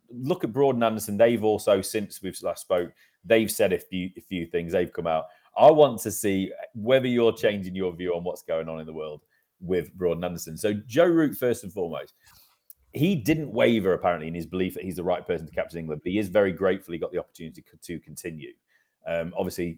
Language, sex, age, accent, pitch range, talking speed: English, male, 30-49, British, 90-120 Hz, 225 wpm